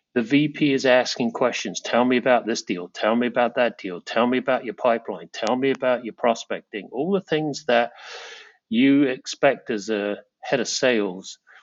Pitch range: 105-135 Hz